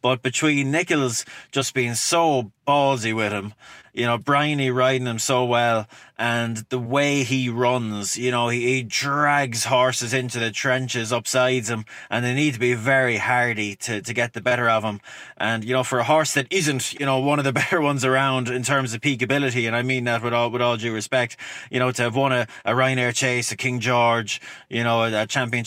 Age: 20-39